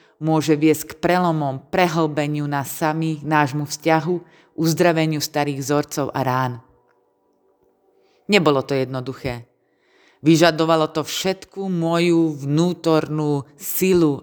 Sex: female